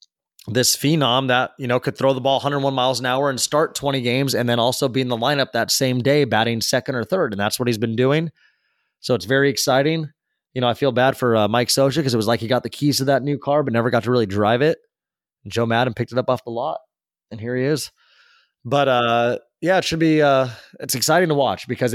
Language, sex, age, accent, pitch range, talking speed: English, male, 20-39, American, 115-140 Hz, 255 wpm